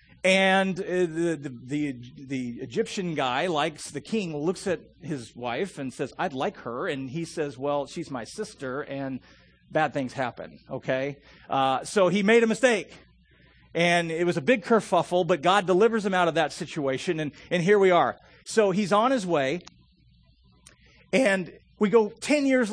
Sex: male